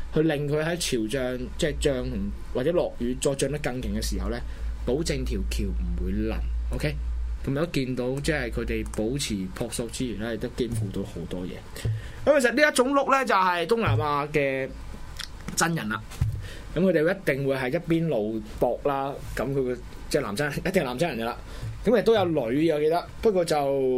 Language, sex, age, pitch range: Chinese, male, 20-39, 105-155 Hz